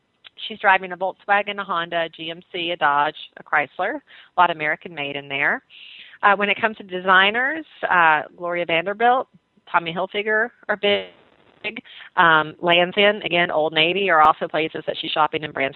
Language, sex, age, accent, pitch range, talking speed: English, female, 40-59, American, 165-215 Hz, 170 wpm